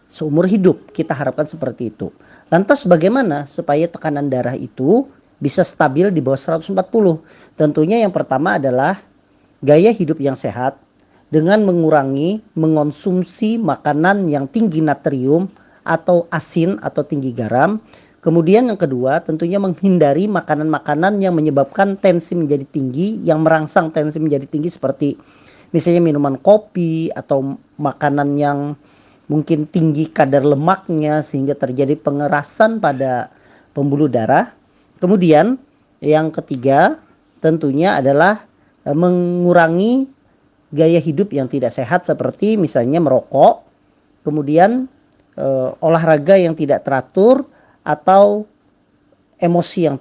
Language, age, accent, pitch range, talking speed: Indonesian, 40-59, native, 145-185 Hz, 110 wpm